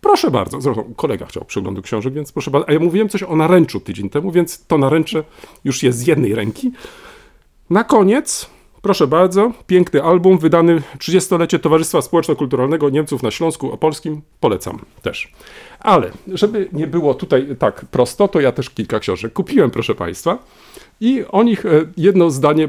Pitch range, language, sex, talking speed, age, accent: 130-185 Hz, Polish, male, 165 wpm, 40-59, native